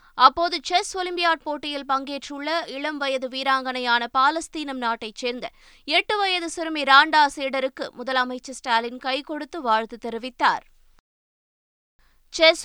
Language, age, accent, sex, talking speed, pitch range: Tamil, 20-39, native, female, 110 wpm, 255-310 Hz